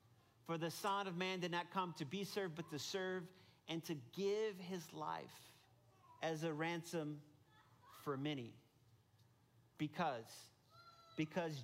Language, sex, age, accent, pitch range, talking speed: English, male, 40-59, American, 125-165 Hz, 135 wpm